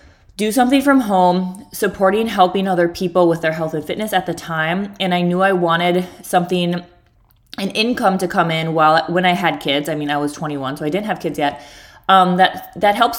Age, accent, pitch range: 20-39, American, 160-190 Hz